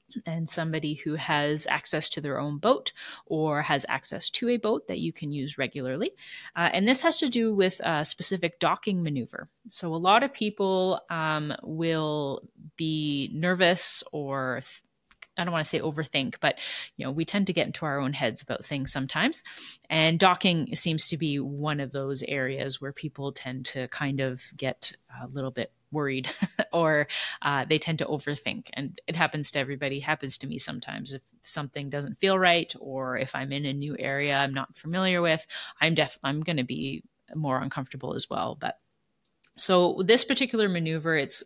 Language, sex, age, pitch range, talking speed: English, female, 30-49, 140-170 Hz, 185 wpm